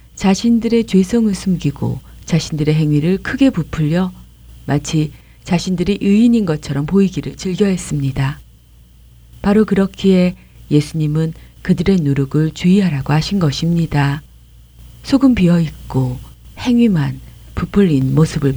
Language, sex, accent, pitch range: Korean, female, native, 145-200 Hz